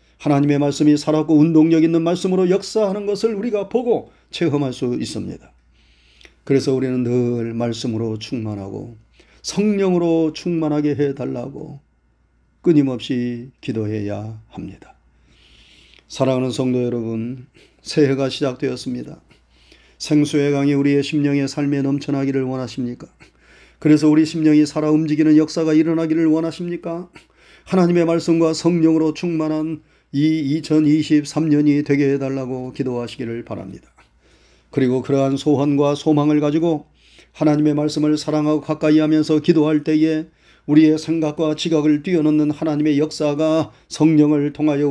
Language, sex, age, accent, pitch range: Korean, male, 30-49, native, 125-155 Hz